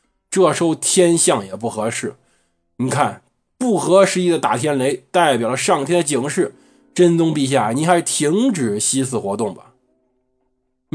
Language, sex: Chinese, male